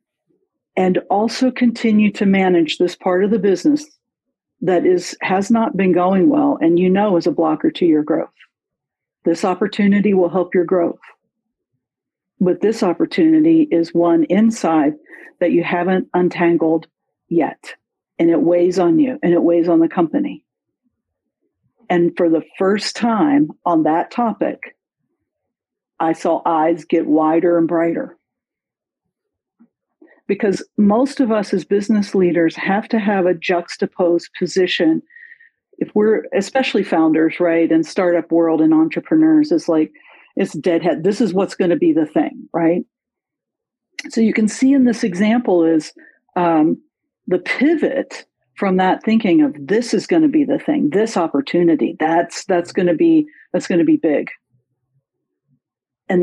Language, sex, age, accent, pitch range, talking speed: English, female, 50-69, American, 170-240 Hz, 150 wpm